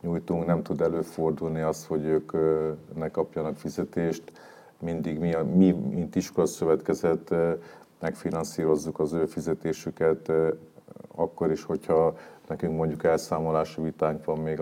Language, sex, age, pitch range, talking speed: Hungarian, male, 40-59, 80-95 Hz, 110 wpm